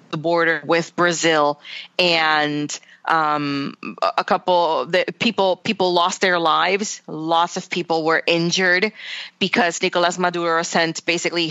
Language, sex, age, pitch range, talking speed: English, female, 20-39, 160-185 Hz, 125 wpm